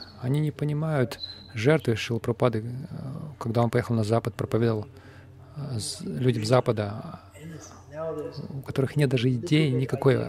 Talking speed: 115 wpm